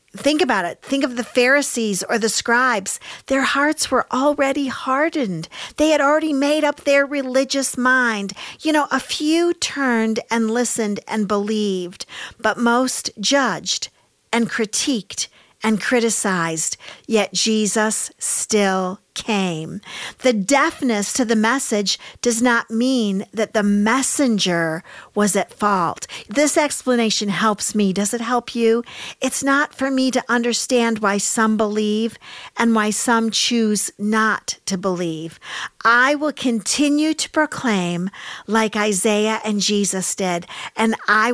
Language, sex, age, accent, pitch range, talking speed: English, female, 50-69, American, 210-260 Hz, 135 wpm